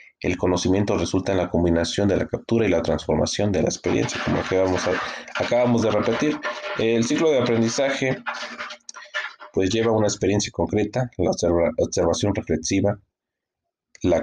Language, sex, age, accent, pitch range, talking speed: Spanish, male, 30-49, Mexican, 85-105 Hz, 130 wpm